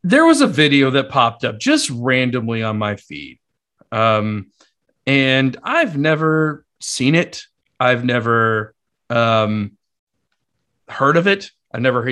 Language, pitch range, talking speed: English, 115-155 Hz, 130 wpm